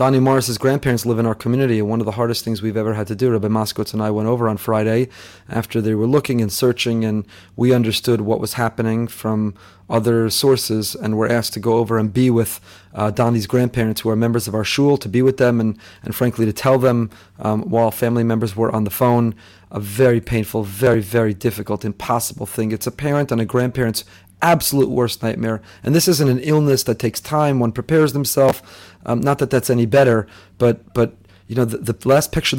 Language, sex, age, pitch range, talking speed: English, male, 30-49, 110-130 Hz, 220 wpm